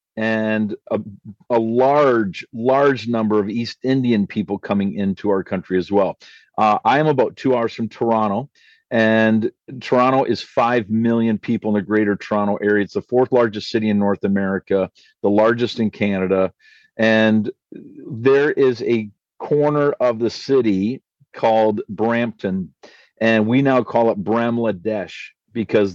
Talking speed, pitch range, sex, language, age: 150 wpm, 105-115 Hz, male, English, 50-69